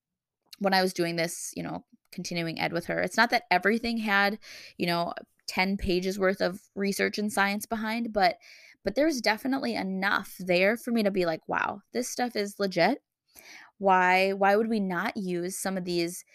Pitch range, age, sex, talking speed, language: 185-230 Hz, 20-39, female, 185 wpm, English